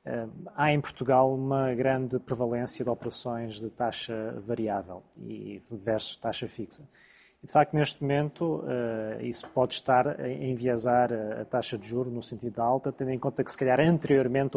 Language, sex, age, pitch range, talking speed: Portuguese, male, 20-39, 120-145 Hz, 175 wpm